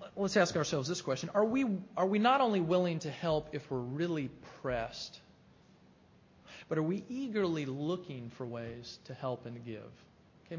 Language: English